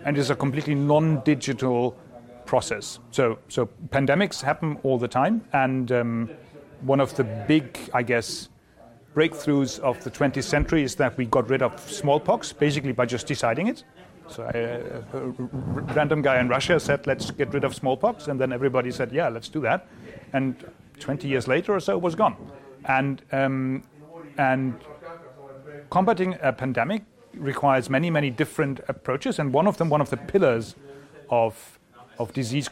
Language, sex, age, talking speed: English, male, 40-59, 165 wpm